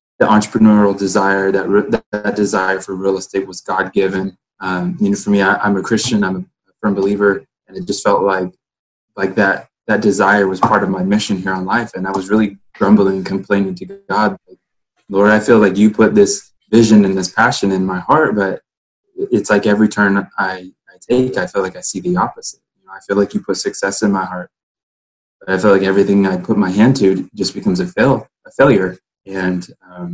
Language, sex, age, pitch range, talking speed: English, male, 20-39, 95-110 Hz, 220 wpm